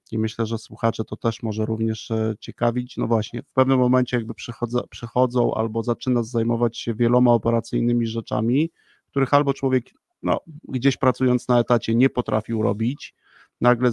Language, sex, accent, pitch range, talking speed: Polish, male, native, 115-125 Hz, 155 wpm